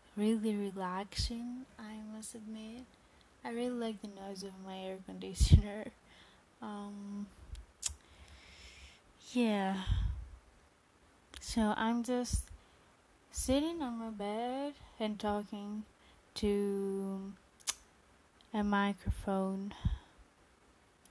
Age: 20-39